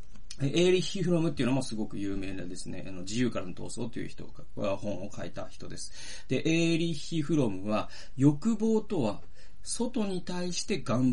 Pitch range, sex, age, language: 105-180 Hz, male, 40-59, Japanese